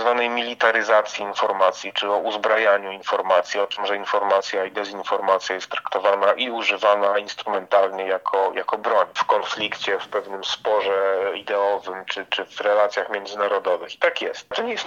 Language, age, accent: Polish, 40-59, native